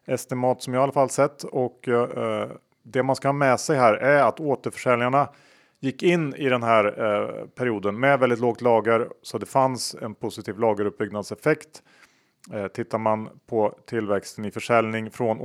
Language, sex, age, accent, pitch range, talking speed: Swedish, male, 30-49, Norwegian, 105-130 Hz, 170 wpm